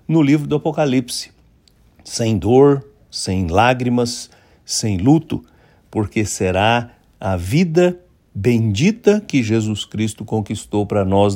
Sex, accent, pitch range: male, Brazilian, 100-145 Hz